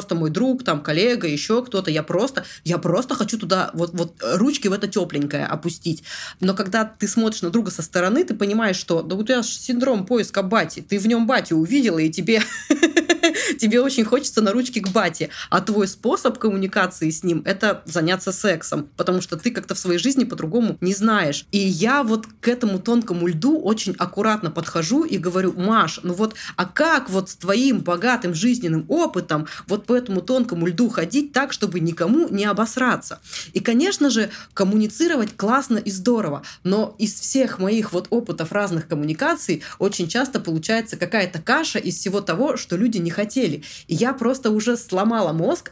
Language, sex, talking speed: Russian, female, 180 wpm